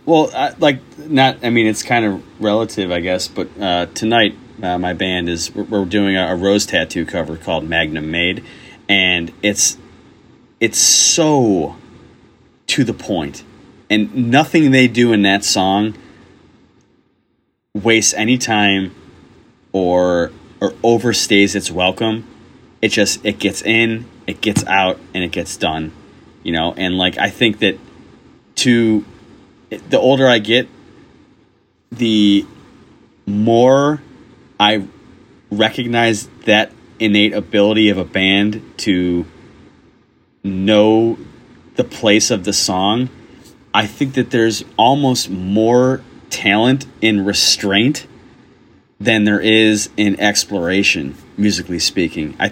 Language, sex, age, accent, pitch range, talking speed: English, male, 30-49, American, 95-115 Hz, 125 wpm